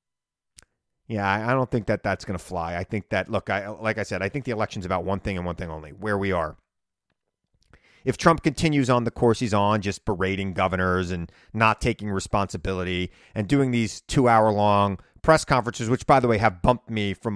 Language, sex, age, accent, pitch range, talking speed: English, male, 30-49, American, 100-155 Hz, 205 wpm